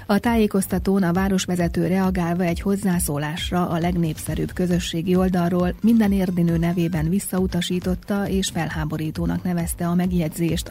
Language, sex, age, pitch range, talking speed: Hungarian, female, 30-49, 165-190 Hz, 110 wpm